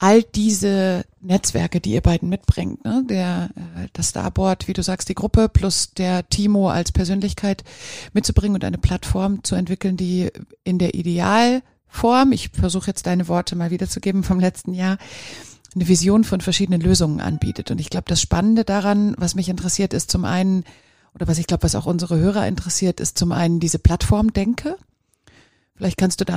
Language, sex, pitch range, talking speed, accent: German, female, 170-195 Hz, 175 wpm, German